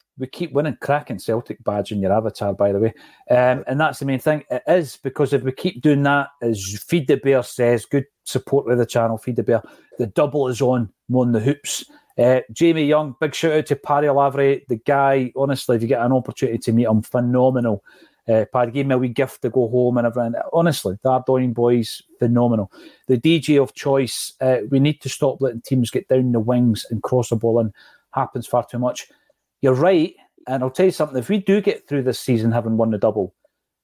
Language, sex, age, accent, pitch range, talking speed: English, male, 40-59, British, 120-140 Hz, 225 wpm